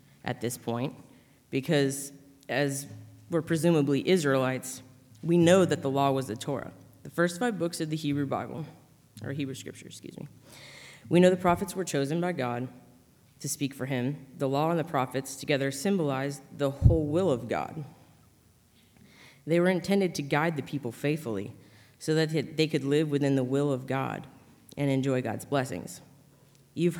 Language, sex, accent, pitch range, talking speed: English, female, American, 130-155 Hz, 170 wpm